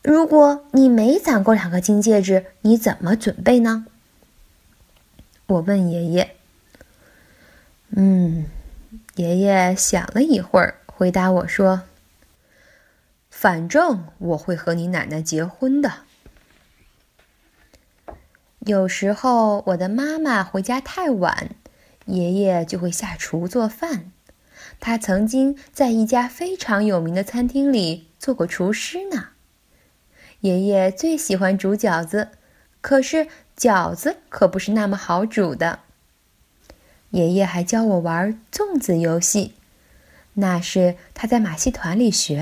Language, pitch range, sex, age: Chinese, 185-245 Hz, female, 10-29